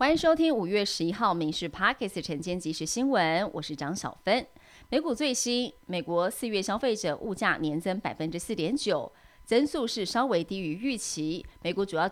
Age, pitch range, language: 30-49, 165-230 Hz, Chinese